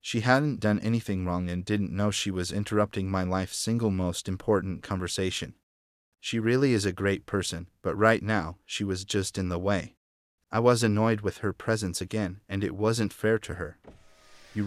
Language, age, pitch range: English, 30-49, 95-110 Hz